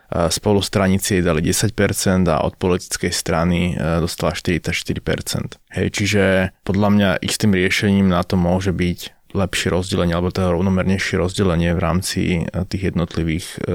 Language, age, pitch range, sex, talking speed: Slovak, 20-39, 95-110 Hz, male, 125 wpm